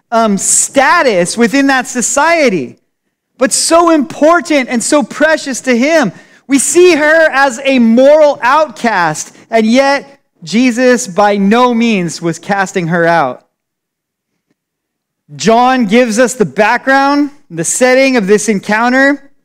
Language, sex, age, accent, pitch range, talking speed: English, male, 30-49, American, 190-265 Hz, 125 wpm